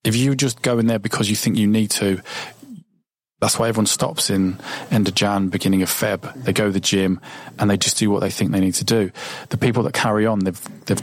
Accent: British